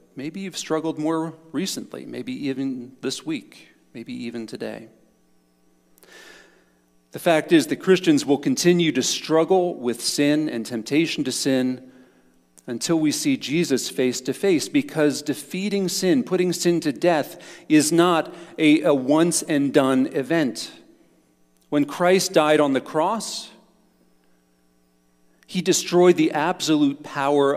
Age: 40-59